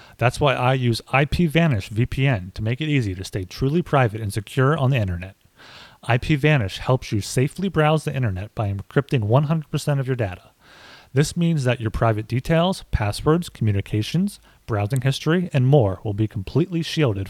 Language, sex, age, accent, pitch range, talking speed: English, male, 30-49, American, 110-145 Hz, 165 wpm